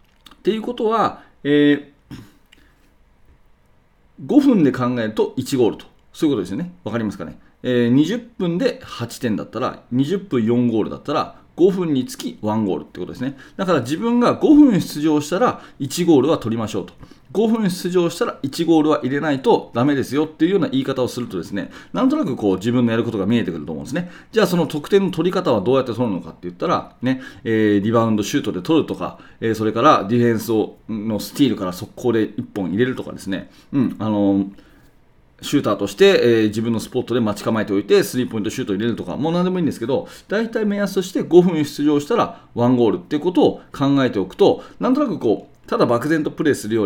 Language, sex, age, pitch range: Japanese, male, 40-59, 110-180 Hz